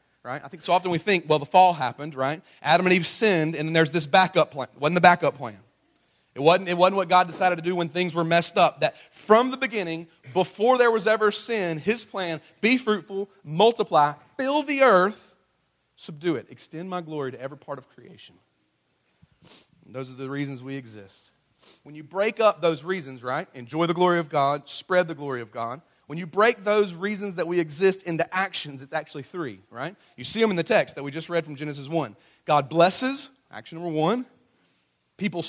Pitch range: 140-185 Hz